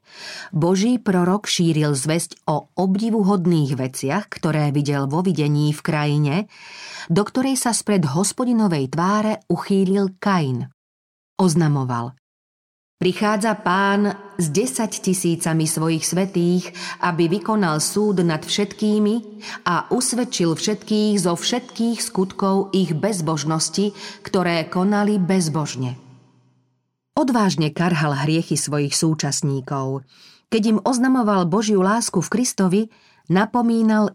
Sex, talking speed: female, 100 wpm